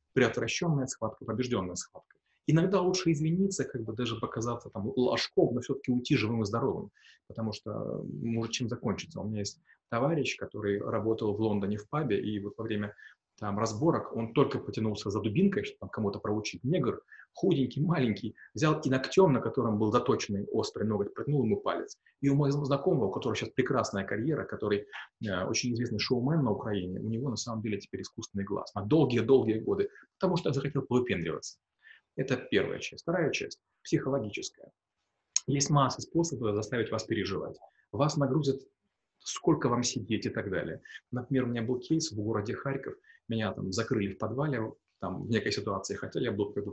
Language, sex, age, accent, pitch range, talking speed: Russian, male, 30-49, native, 110-140 Hz, 175 wpm